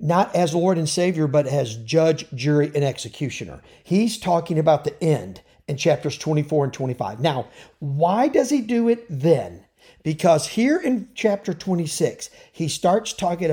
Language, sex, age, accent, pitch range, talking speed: English, male, 50-69, American, 150-205 Hz, 160 wpm